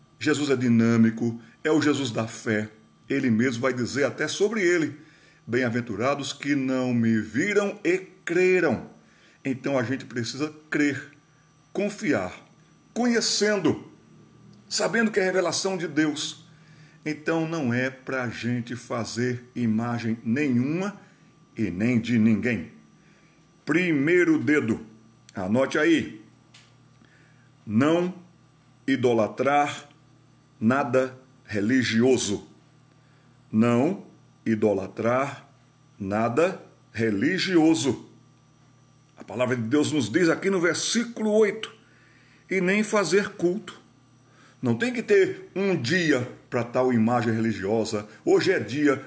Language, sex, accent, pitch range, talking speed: Portuguese, male, Brazilian, 120-160 Hz, 110 wpm